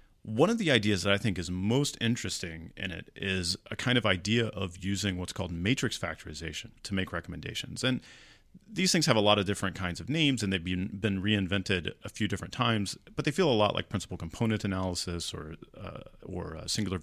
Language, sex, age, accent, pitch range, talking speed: English, male, 40-59, American, 90-115 Hz, 205 wpm